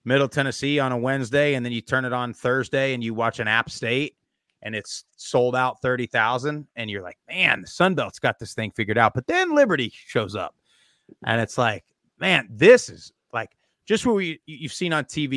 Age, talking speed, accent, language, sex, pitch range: 30-49, 215 wpm, American, English, male, 115-140 Hz